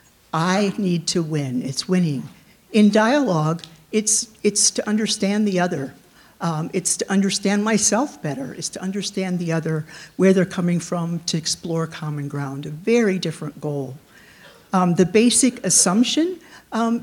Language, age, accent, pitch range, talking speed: English, 50-69, American, 170-230 Hz, 150 wpm